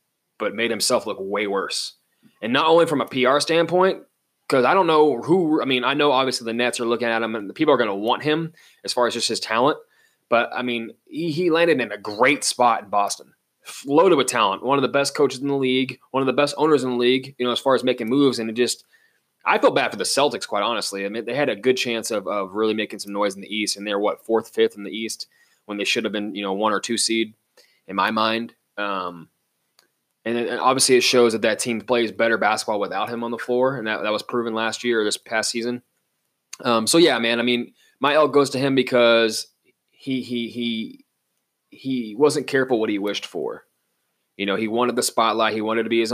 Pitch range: 110-130 Hz